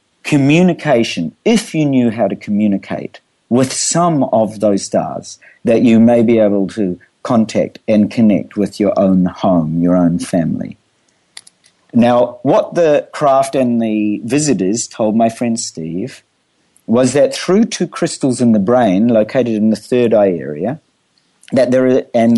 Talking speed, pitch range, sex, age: 150 wpm, 110-140 Hz, male, 50-69